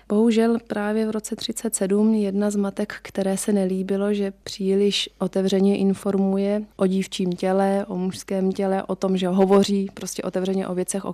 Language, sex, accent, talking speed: Czech, female, native, 160 wpm